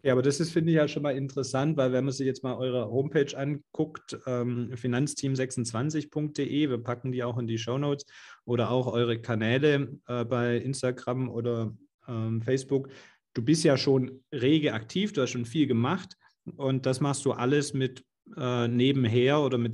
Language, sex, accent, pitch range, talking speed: German, male, German, 115-140 Hz, 180 wpm